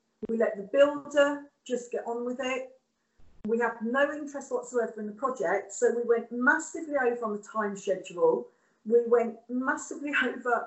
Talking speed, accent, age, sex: 170 wpm, British, 40-59, female